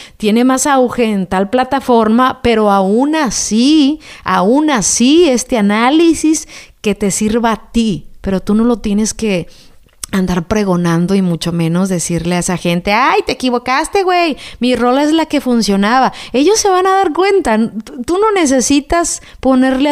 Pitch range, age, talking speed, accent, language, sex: 200-255 Hz, 30-49, 160 wpm, Mexican, Spanish, female